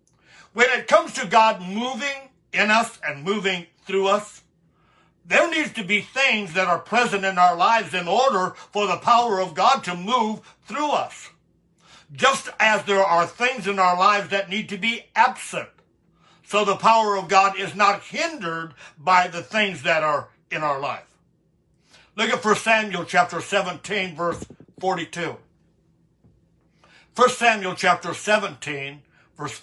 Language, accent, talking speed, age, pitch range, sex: English, American, 155 wpm, 60-79, 170-225 Hz, male